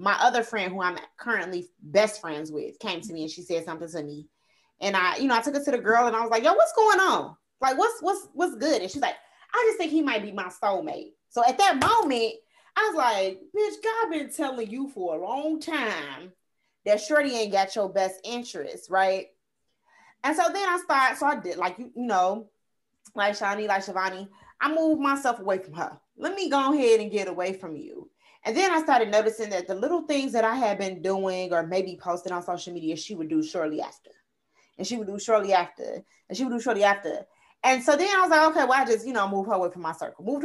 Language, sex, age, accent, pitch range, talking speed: English, female, 30-49, American, 190-300 Hz, 240 wpm